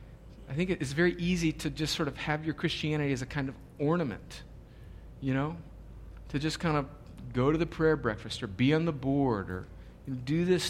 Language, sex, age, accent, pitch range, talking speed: English, male, 50-69, American, 115-140 Hz, 200 wpm